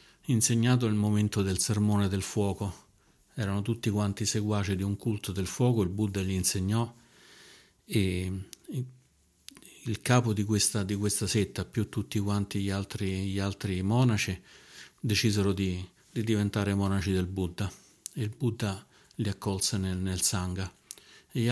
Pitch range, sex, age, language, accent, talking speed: 95-110 Hz, male, 50-69, Italian, native, 145 wpm